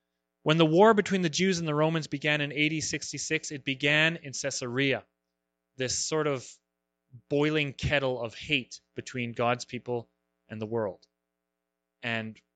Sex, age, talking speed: male, 30-49, 150 wpm